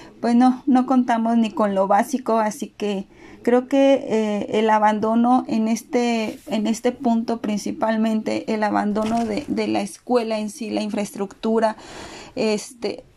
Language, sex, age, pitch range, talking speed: Spanish, female, 30-49, 210-250 Hz, 145 wpm